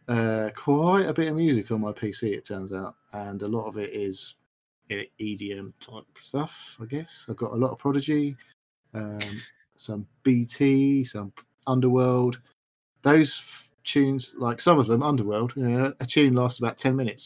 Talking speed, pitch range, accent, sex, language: 180 wpm, 110-135 Hz, British, male, English